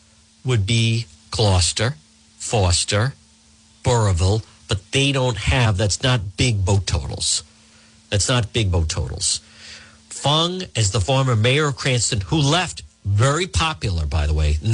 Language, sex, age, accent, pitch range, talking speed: English, male, 50-69, American, 95-125 Hz, 140 wpm